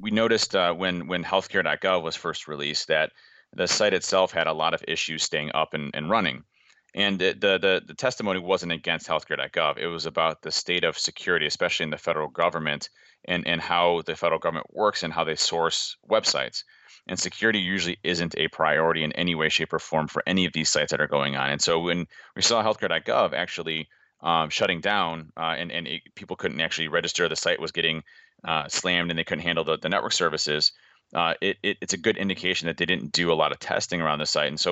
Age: 30-49